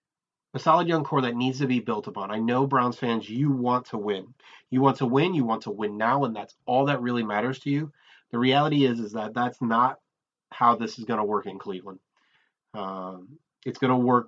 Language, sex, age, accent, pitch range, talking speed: English, male, 30-49, American, 115-140 Hz, 230 wpm